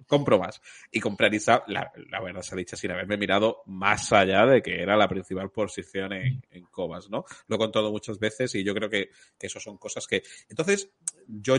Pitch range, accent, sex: 100-135 Hz, Spanish, male